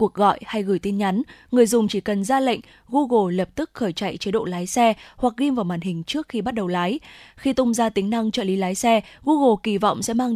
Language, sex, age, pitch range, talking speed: Vietnamese, female, 20-39, 195-245 Hz, 260 wpm